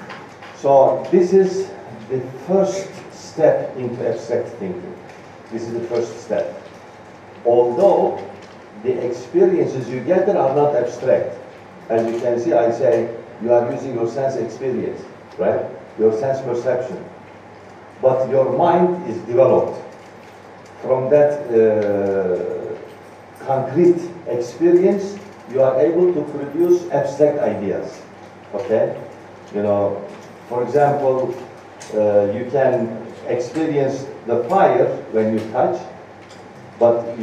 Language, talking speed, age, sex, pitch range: Indonesian, 115 wpm, 50-69, male, 120-170 Hz